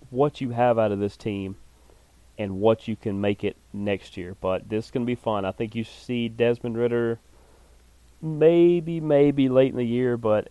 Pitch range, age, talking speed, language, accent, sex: 105-130 Hz, 30-49, 205 wpm, English, American, male